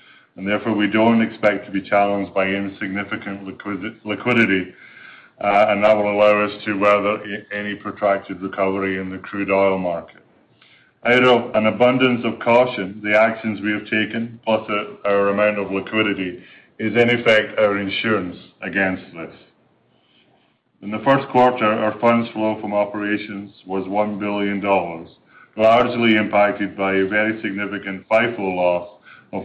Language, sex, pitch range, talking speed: English, male, 100-110 Hz, 145 wpm